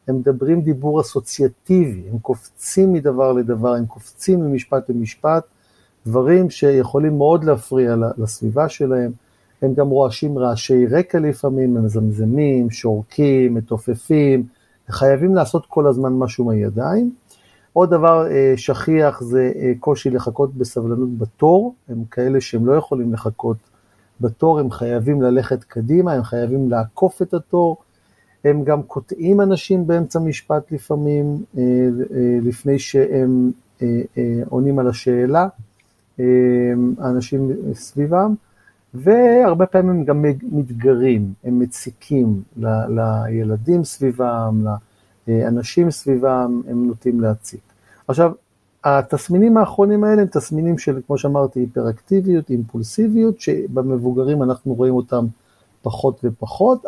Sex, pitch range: male, 120-150 Hz